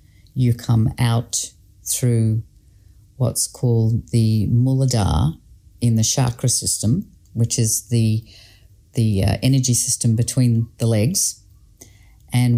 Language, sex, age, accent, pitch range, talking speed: English, female, 50-69, Australian, 105-135 Hz, 110 wpm